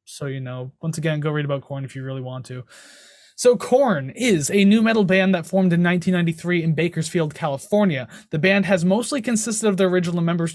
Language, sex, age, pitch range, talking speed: English, male, 20-39, 155-195 Hz, 210 wpm